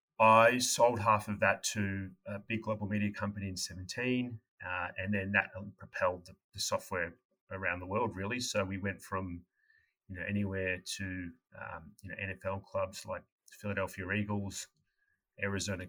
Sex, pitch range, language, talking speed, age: male, 90-105 Hz, English, 160 wpm, 30-49